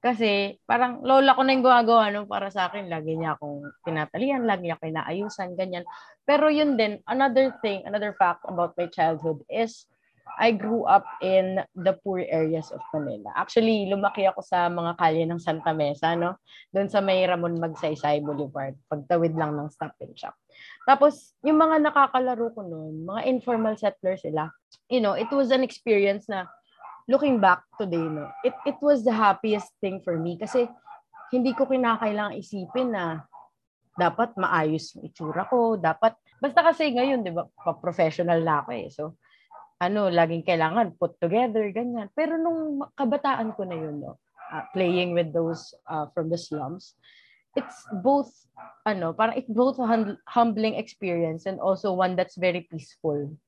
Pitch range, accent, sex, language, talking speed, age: 165-245 Hz, native, female, Filipino, 165 wpm, 20-39